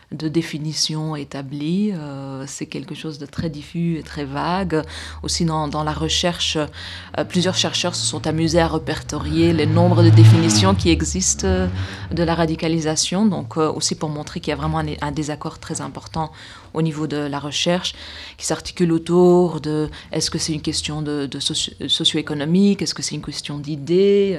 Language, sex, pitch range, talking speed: French, female, 150-170 Hz, 175 wpm